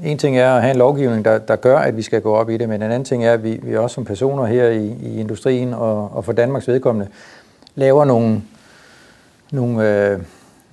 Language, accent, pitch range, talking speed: Danish, native, 115-140 Hz, 230 wpm